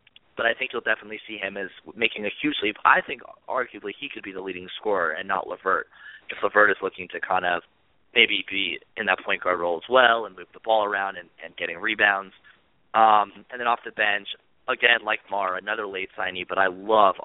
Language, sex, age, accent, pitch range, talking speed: English, male, 30-49, American, 95-110 Hz, 225 wpm